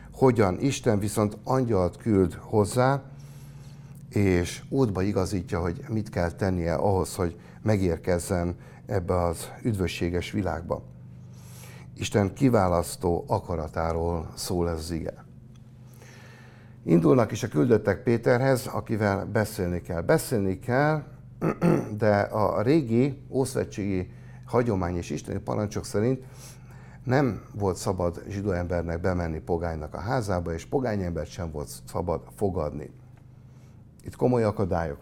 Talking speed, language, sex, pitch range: 110 wpm, Hungarian, male, 90-130 Hz